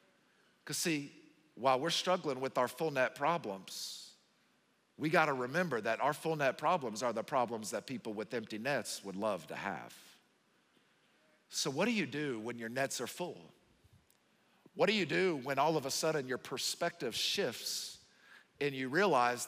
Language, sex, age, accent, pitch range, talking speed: English, male, 50-69, American, 125-165 Hz, 175 wpm